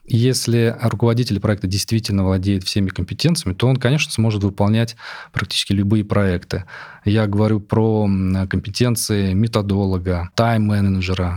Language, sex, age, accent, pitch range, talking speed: Russian, male, 20-39, native, 100-115 Hz, 110 wpm